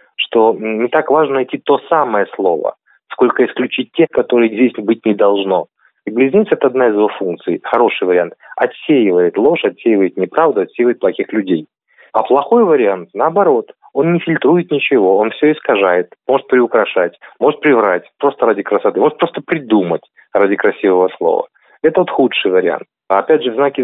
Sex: male